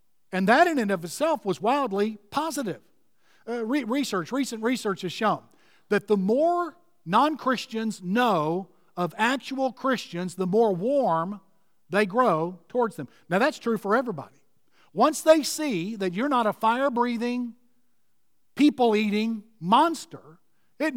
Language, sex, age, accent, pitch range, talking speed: English, male, 50-69, American, 195-265 Hz, 135 wpm